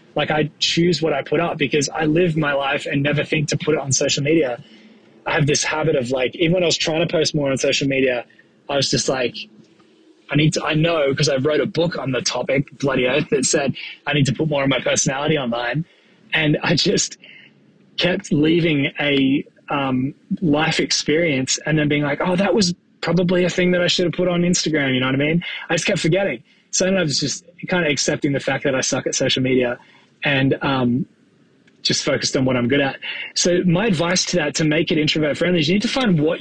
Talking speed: 235 wpm